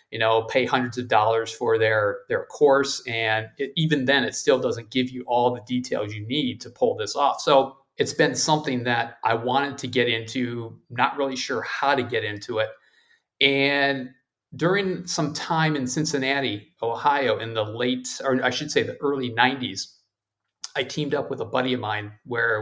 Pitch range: 120-145 Hz